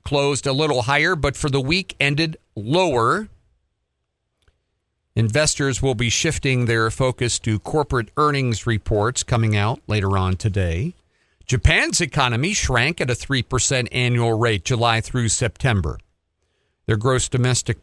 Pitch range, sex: 105-135 Hz, male